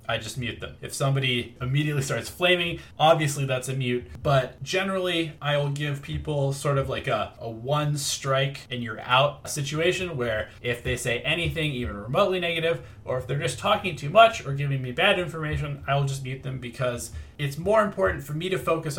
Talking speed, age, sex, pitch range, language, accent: 200 wpm, 20-39, male, 125-160 Hz, English, American